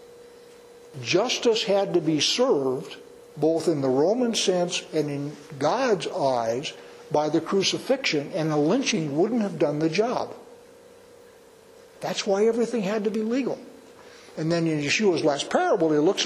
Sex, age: male, 60-79